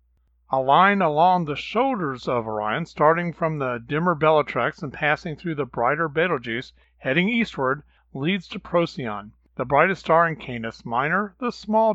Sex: male